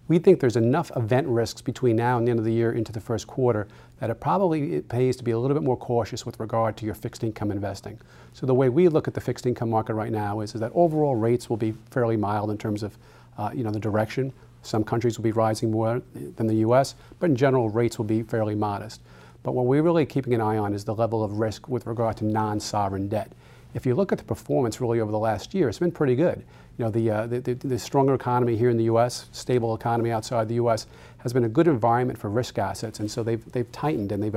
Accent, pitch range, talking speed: American, 110-125 Hz, 260 wpm